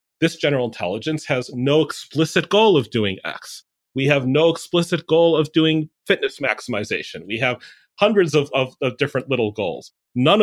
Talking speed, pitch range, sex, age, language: 165 wpm, 125-155 Hz, male, 30-49, English